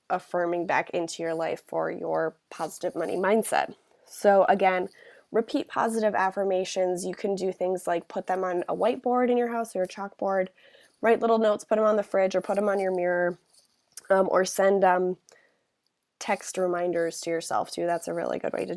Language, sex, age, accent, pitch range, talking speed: English, female, 20-39, American, 180-215 Hz, 190 wpm